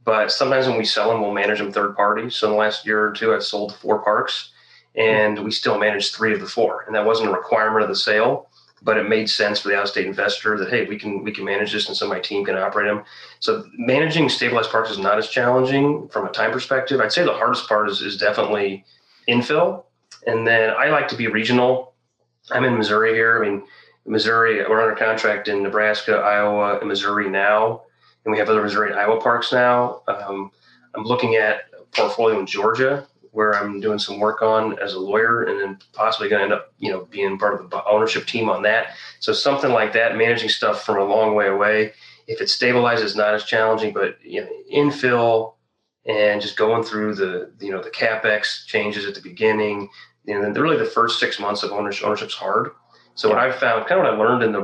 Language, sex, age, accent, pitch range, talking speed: English, male, 30-49, American, 105-120 Hz, 225 wpm